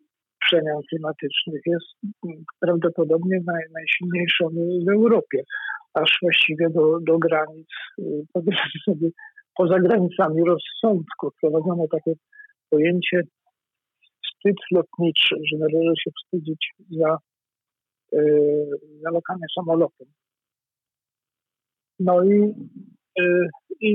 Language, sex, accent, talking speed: Polish, male, native, 85 wpm